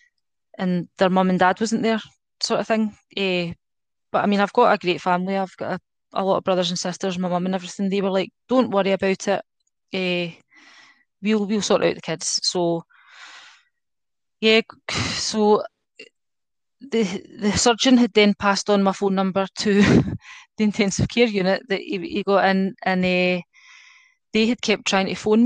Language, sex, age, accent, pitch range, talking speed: English, female, 20-39, British, 190-225 Hz, 180 wpm